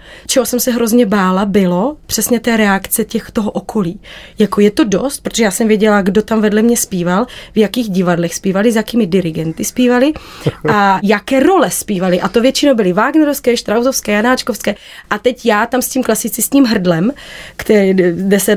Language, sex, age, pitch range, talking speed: Czech, female, 30-49, 205-250 Hz, 180 wpm